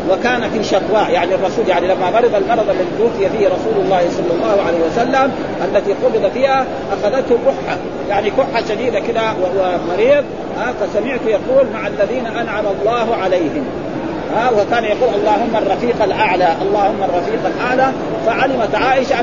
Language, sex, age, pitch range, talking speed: Arabic, male, 40-59, 225-275 Hz, 145 wpm